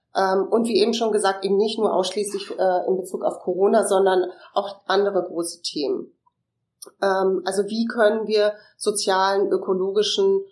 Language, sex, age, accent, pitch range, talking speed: German, female, 30-49, German, 180-215 Hz, 135 wpm